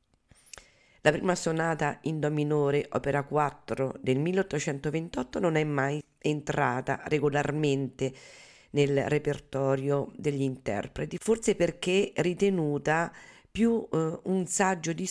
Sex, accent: female, native